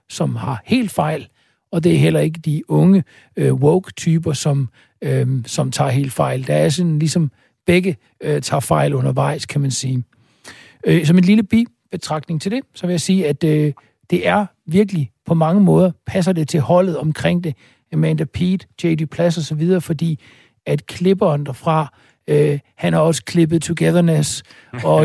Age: 60-79